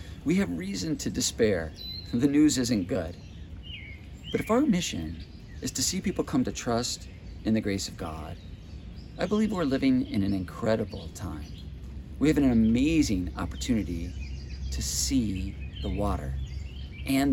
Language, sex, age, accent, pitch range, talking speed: English, male, 40-59, American, 85-120 Hz, 150 wpm